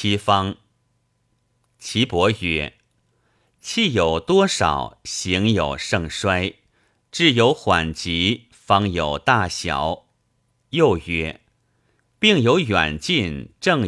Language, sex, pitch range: Chinese, male, 90-125 Hz